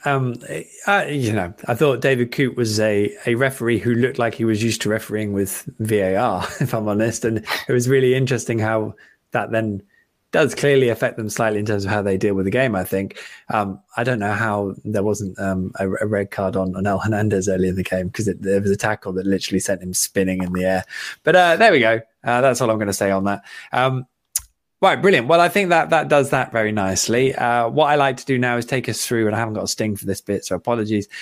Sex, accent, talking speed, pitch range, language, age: male, British, 250 wpm, 105-130 Hz, English, 20-39